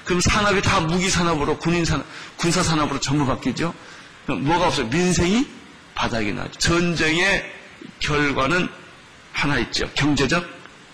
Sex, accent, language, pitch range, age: male, native, Korean, 145-185 Hz, 40-59